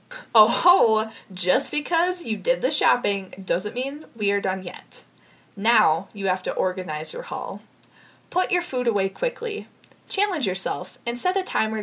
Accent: American